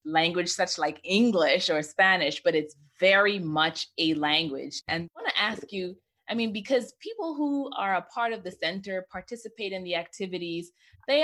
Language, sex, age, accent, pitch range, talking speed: English, female, 20-39, American, 155-205 Hz, 180 wpm